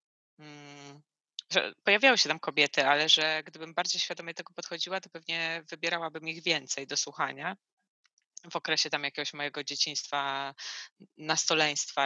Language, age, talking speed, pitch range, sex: Polish, 20-39, 135 wpm, 155-185 Hz, female